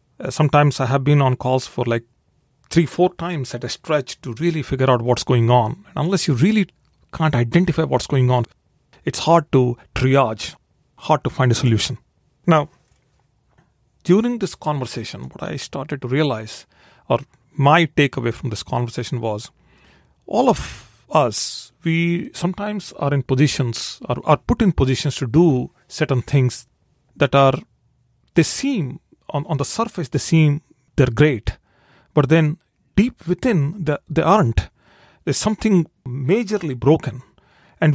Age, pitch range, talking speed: 40-59, 125-160 Hz, 150 wpm